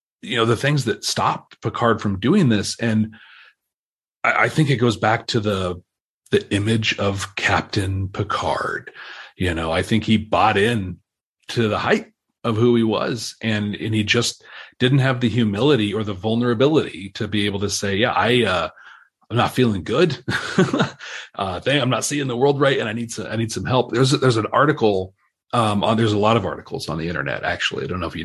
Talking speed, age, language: 205 wpm, 40-59, English